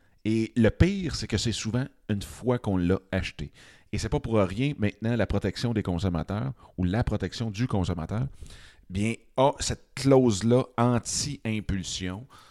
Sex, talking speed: male, 160 wpm